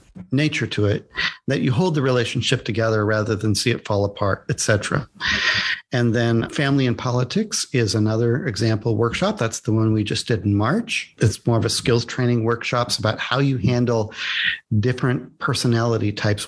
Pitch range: 110-135 Hz